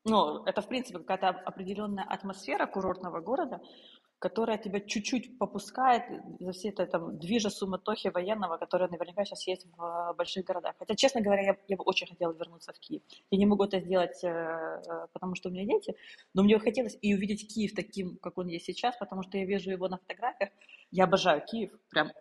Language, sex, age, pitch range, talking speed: Ukrainian, female, 20-39, 180-205 Hz, 185 wpm